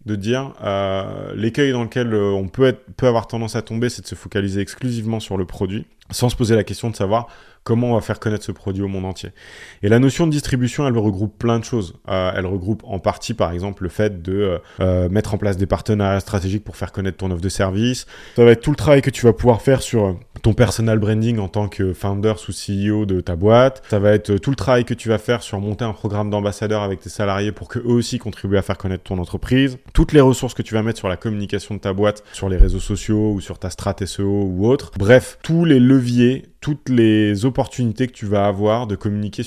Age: 20-39